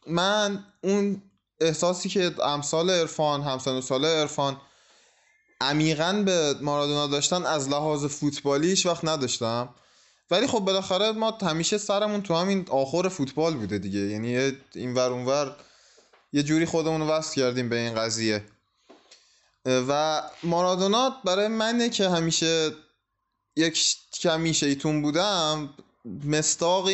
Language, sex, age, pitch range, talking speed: Persian, male, 20-39, 135-170 Hz, 110 wpm